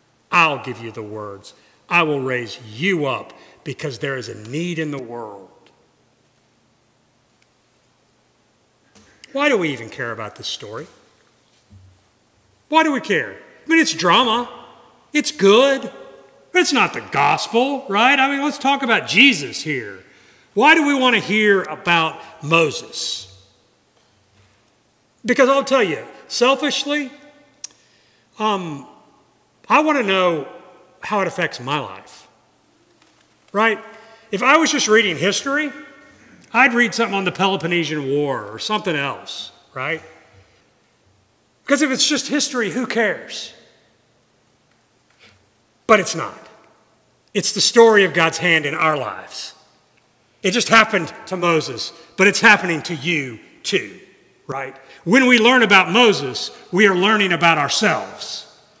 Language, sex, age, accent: English, male, 40-59, American